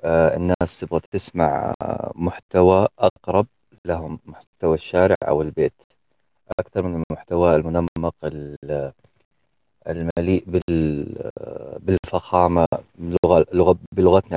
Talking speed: 80 wpm